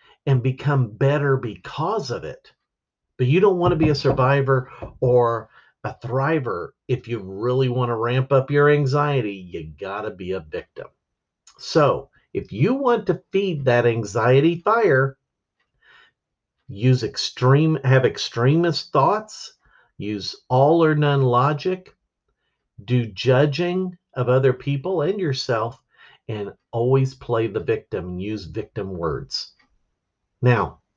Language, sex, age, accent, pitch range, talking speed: English, male, 50-69, American, 110-145 Hz, 130 wpm